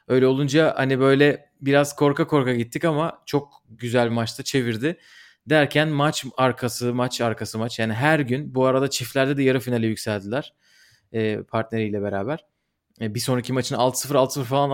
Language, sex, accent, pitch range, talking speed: Turkish, male, native, 125-165 Hz, 145 wpm